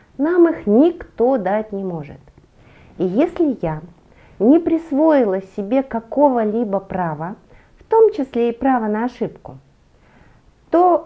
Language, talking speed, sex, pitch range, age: Russian, 120 wpm, female, 185-270 Hz, 40-59